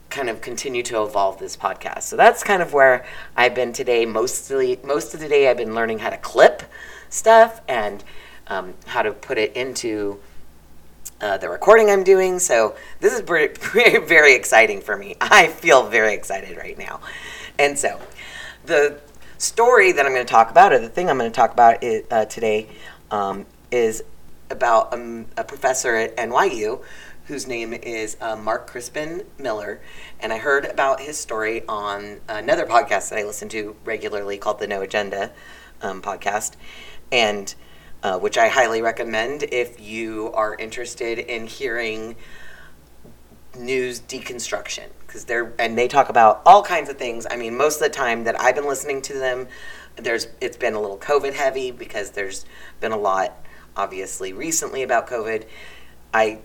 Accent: American